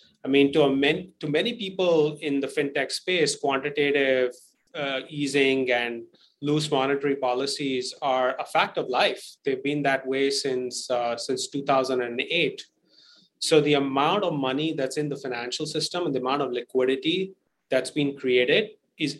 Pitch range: 130-150 Hz